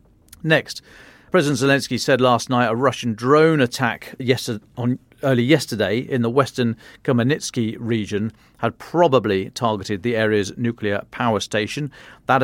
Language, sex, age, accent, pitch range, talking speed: English, male, 40-59, British, 110-130 Hz, 135 wpm